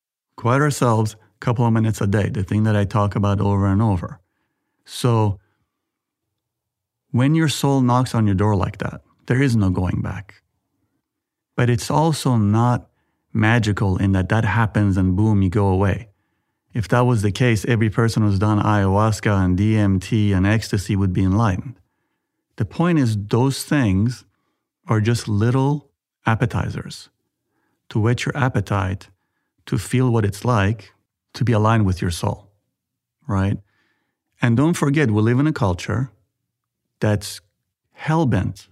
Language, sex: English, male